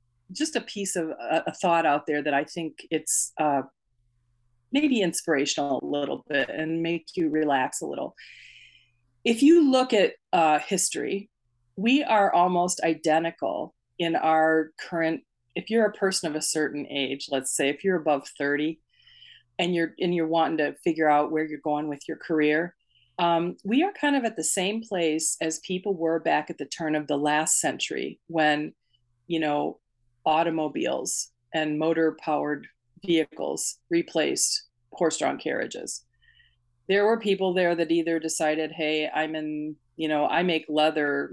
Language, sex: English, female